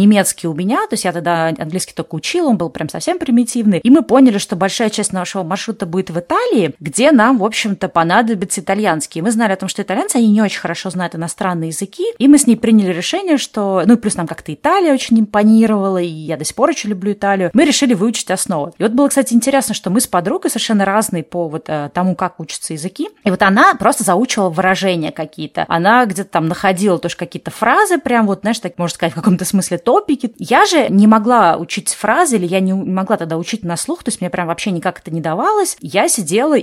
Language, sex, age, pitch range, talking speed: Russian, female, 20-39, 175-235 Hz, 225 wpm